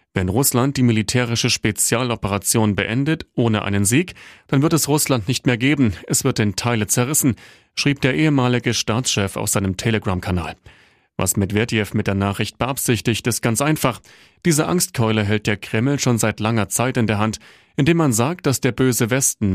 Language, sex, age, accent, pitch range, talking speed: German, male, 30-49, German, 105-135 Hz, 170 wpm